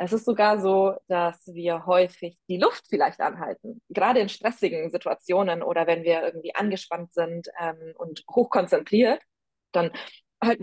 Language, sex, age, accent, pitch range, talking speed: German, female, 20-39, German, 175-230 Hz, 145 wpm